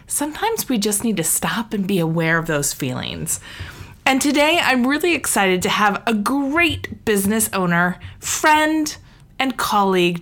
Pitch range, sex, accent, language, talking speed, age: 175-270 Hz, female, American, English, 155 wpm, 30-49